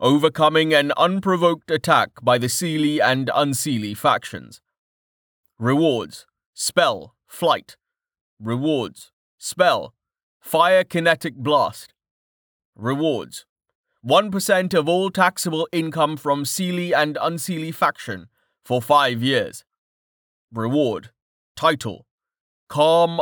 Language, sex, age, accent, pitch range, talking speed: English, male, 30-49, British, 120-165 Hz, 90 wpm